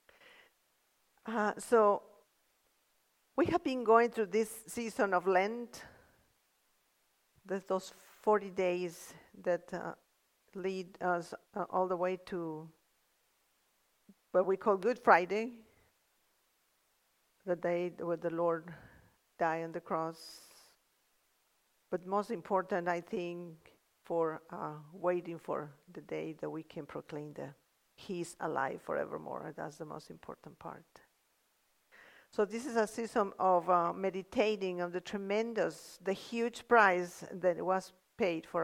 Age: 50-69